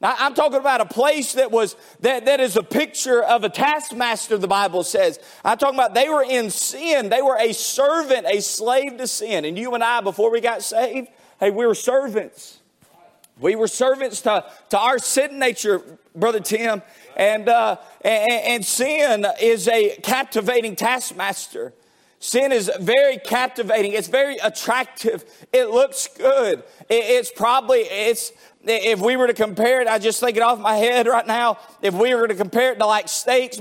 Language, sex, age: English, male, 30-49